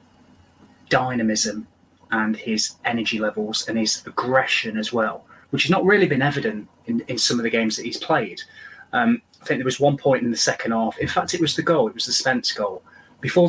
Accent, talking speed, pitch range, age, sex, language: British, 215 wpm, 115-150 Hz, 30-49, male, English